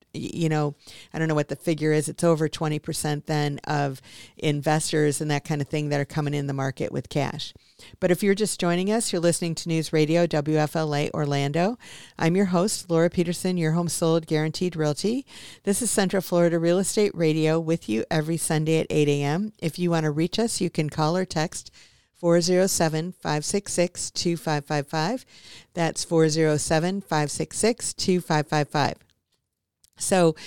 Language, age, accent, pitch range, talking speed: English, 50-69, American, 150-175 Hz, 160 wpm